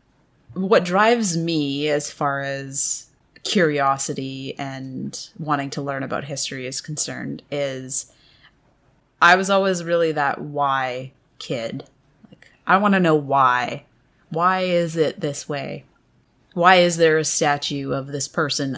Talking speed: 135 wpm